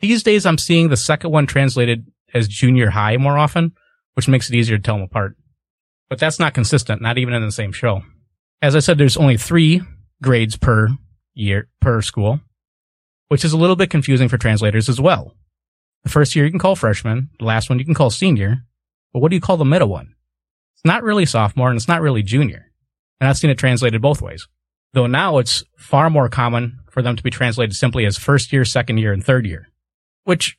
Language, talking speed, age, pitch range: English, 220 wpm, 30-49, 110-140 Hz